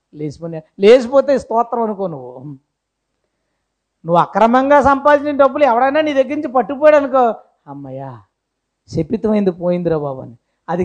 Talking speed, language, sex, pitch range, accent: 120 wpm, Telugu, female, 170-265 Hz, native